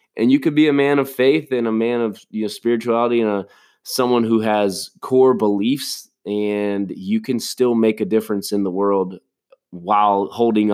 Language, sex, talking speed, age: English, male, 190 wpm, 20-39